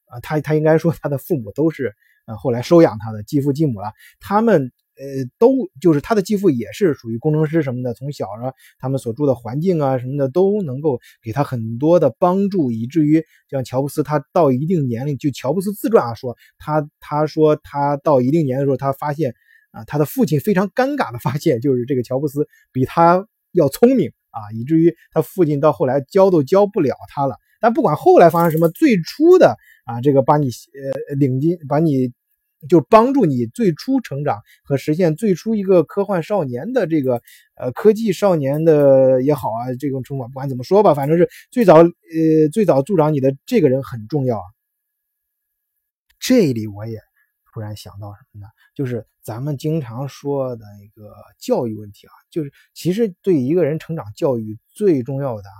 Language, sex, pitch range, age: Chinese, male, 130-175 Hz, 20-39